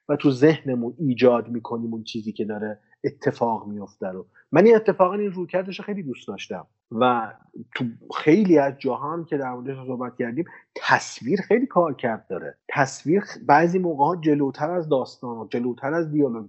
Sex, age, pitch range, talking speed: male, 30-49, 120-165 Hz, 175 wpm